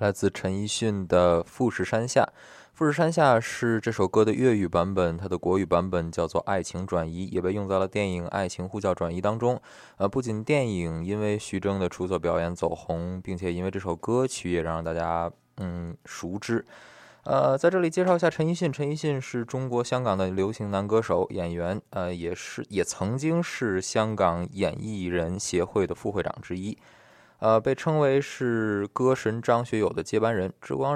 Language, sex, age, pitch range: Chinese, male, 20-39, 90-115 Hz